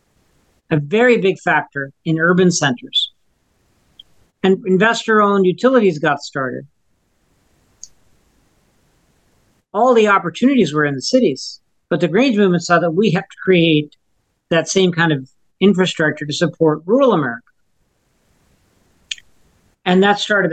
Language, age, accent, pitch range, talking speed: English, 50-69, American, 150-200 Hz, 125 wpm